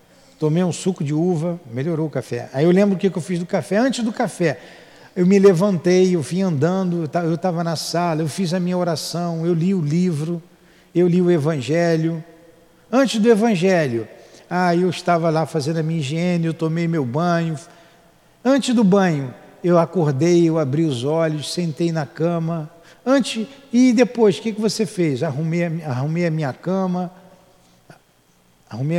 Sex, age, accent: male, 50-69, Brazilian